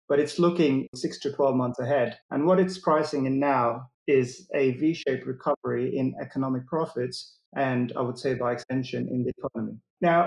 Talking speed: 180 wpm